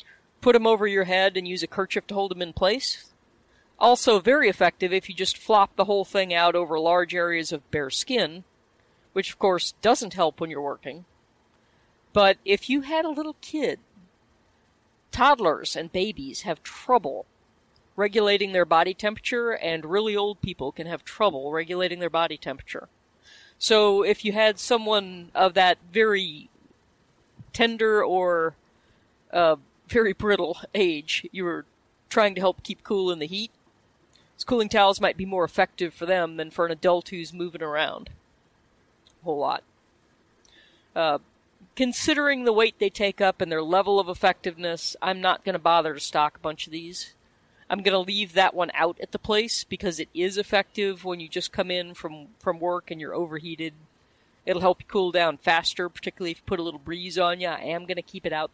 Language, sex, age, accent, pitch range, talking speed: English, female, 40-59, American, 170-205 Hz, 180 wpm